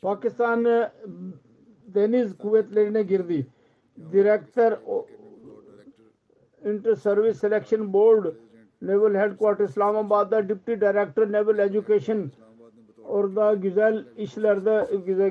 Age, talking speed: 50-69, 70 wpm